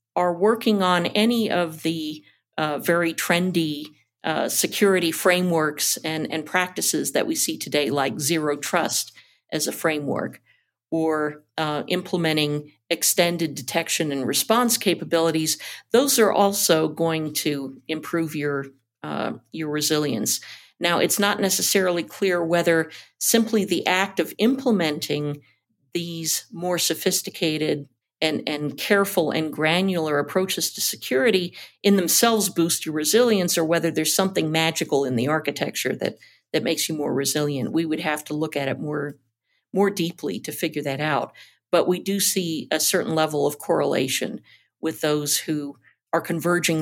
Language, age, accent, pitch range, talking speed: English, 50-69, American, 150-180 Hz, 145 wpm